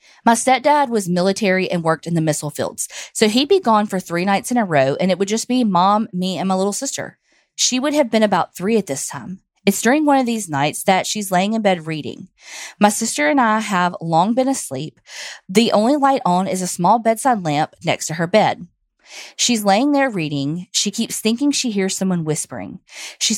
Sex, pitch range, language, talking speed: female, 170-225 Hz, English, 220 wpm